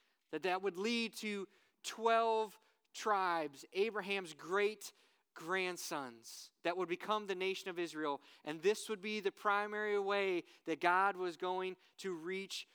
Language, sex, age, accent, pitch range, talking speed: English, male, 30-49, American, 160-200 Hz, 135 wpm